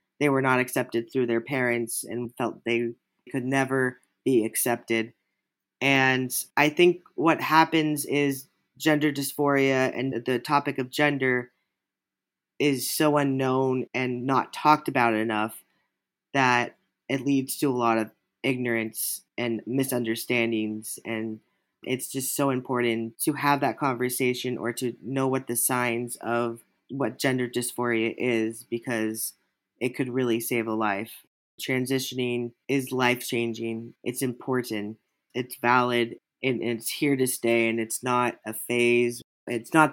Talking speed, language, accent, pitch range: 135 wpm, English, American, 115-135 Hz